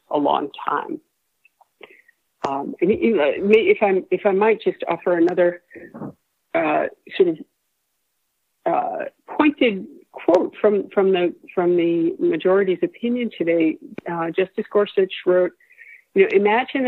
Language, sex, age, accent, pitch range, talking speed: English, female, 50-69, American, 185-275 Hz, 115 wpm